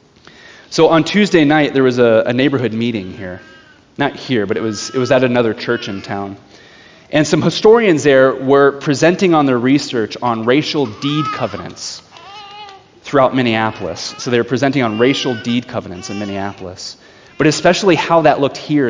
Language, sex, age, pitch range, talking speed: English, male, 30-49, 110-150 Hz, 170 wpm